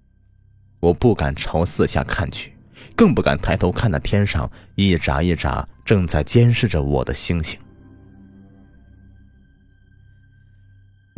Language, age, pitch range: Chinese, 30-49, 85-110 Hz